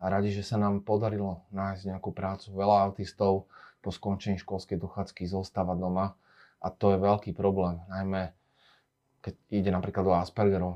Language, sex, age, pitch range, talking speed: Slovak, male, 30-49, 95-105 Hz, 155 wpm